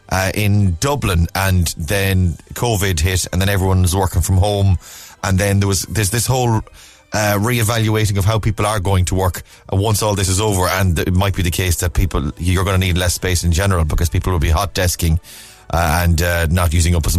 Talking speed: 215 wpm